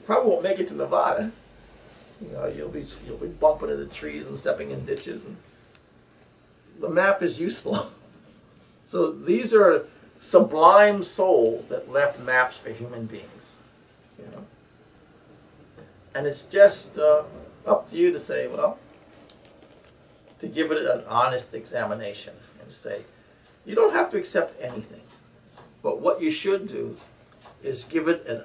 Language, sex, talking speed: English, male, 150 wpm